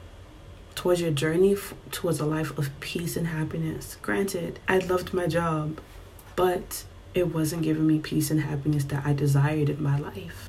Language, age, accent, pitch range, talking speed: English, 30-49, American, 145-190 Hz, 165 wpm